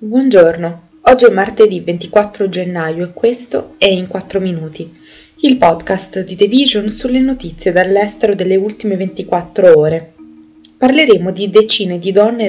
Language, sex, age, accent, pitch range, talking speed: Italian, female, 20-39, native, 170-215 Hz, 140 wpm